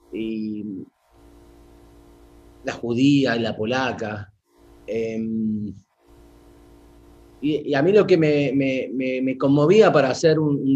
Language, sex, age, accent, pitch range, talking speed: English, male, 30-49, Argentinian, 100-145 Hz, 110 wpm